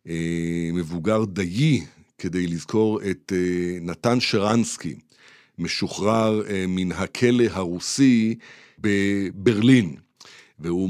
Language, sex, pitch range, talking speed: Hebrew, male, 95-120 Hz, 70 wpm